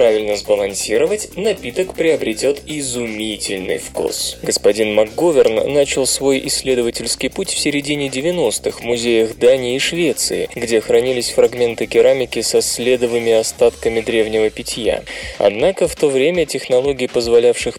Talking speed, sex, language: 120 wpm, male, Russian